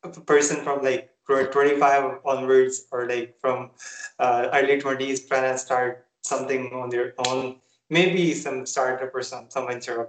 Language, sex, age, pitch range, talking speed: Urdu, male, 20-39, 130-145 Hz, 160 wpm